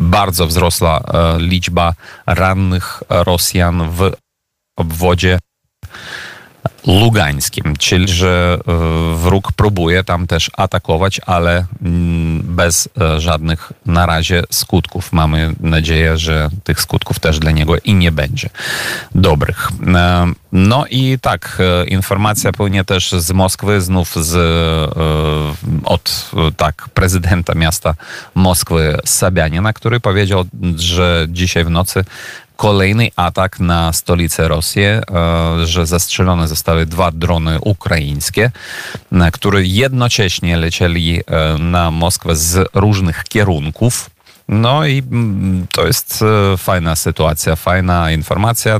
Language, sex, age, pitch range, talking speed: Polish, male, 30-49, 85-100 Hz, 105 wpm